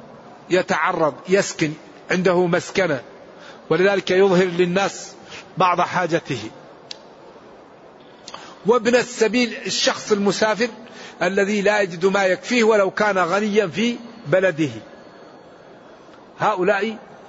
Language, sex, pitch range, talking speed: Arabic, male, 175-225 Hz, 85 wpm